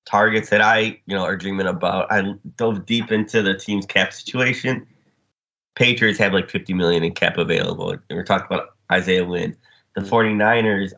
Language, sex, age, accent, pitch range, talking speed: English, male, 20-39, American, 95-105 Hz, 175 wpm